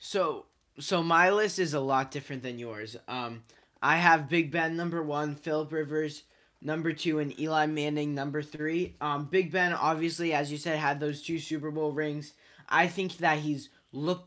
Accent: American